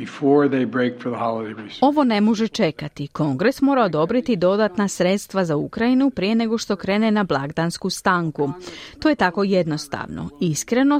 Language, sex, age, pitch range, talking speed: Croatian, female, 30-49, 165-235 Hz, 125 wpm